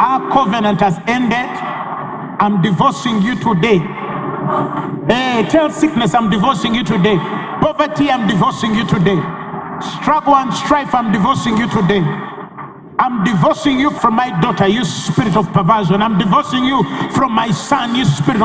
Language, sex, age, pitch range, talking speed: English, male, 50-69, 175-235 Hz, 145 wpm